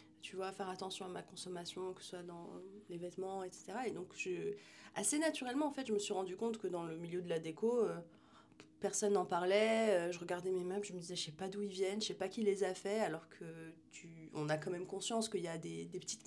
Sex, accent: female, French